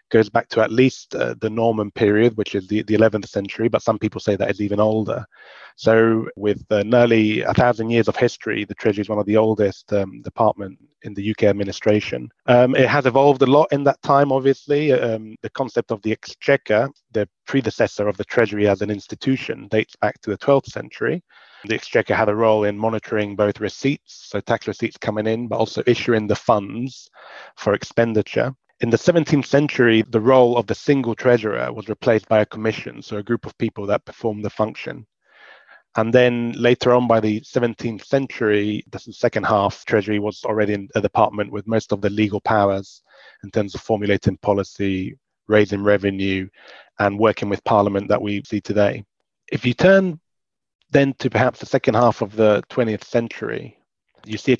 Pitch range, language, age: 105-120 Hz, English, 20-39